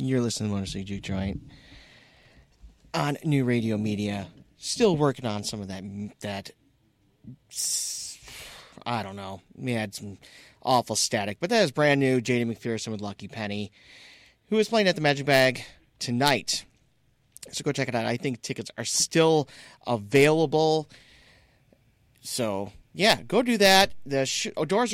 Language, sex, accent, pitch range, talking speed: English, male, American, 115-150 Hz, 155 wpm